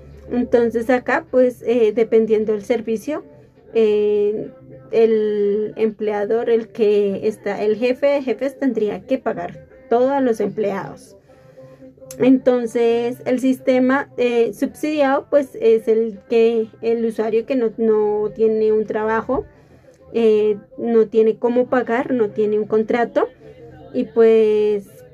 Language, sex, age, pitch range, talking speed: Spanish, female, 30-49, 215-250 Hz, 120 wpm